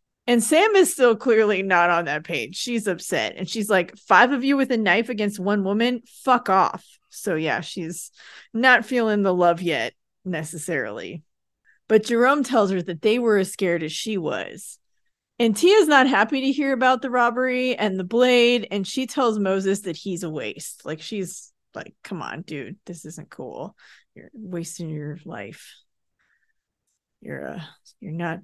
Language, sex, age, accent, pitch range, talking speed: English, female, 30-49, American, 180-245 Hz, 175 wpm